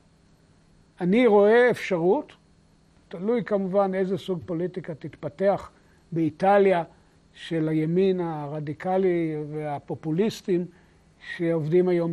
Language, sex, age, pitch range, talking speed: Hebrew, male, 60-79, 175-245 Hz, 80 wpm